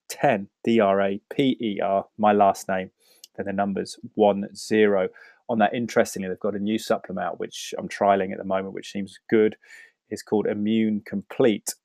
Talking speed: 155 wpm